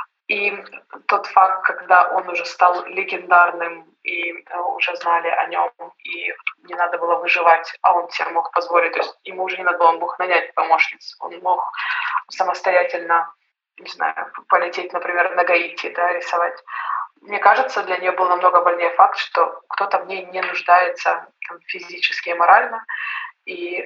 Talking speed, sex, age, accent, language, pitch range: 160 wpm, female, 20-39, native, Ukrainian, 175-190 Hz